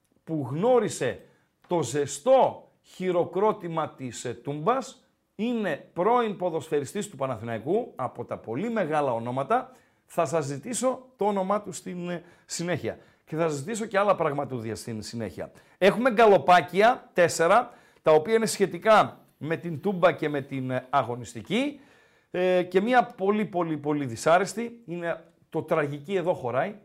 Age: 50-69